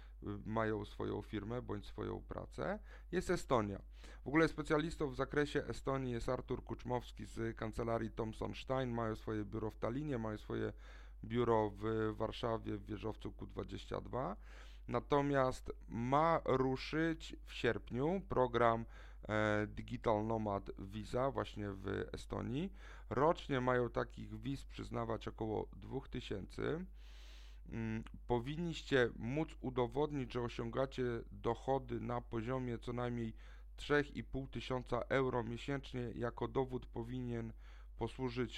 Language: Polish